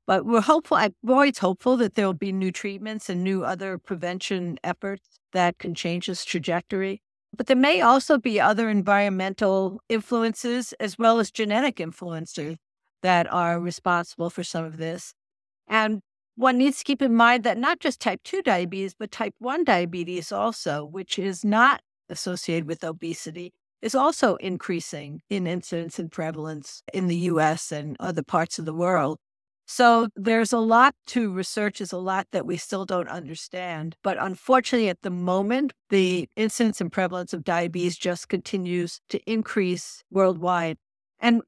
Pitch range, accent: 175-230 Hz, American